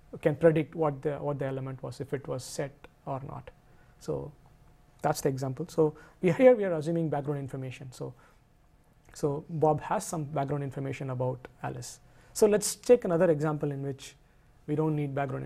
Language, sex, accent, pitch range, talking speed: English, male, Indian, 140-165 Hz, 175 wpm